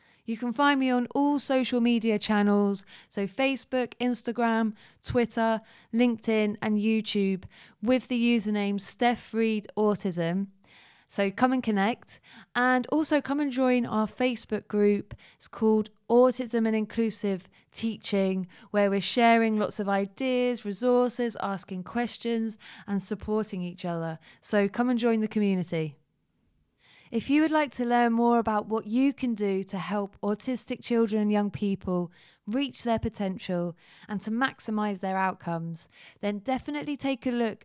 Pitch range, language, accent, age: 195-240 Hz, English, British, 20-39